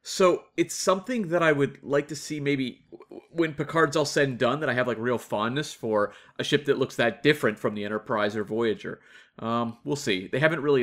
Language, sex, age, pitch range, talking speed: English, male, 30-49, 115-170 Hz, 220 wpm